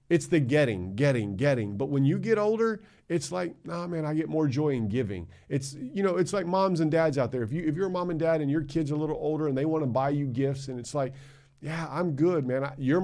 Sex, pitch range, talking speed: male, 130-160 Hz, 270 wpm